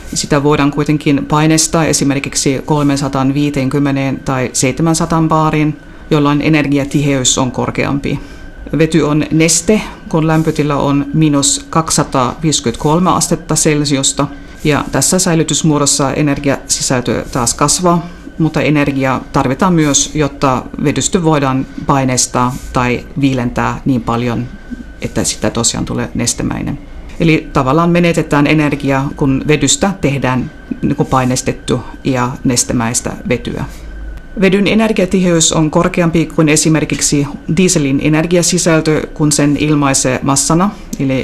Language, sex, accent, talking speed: Finnish, female, native, 105 wpm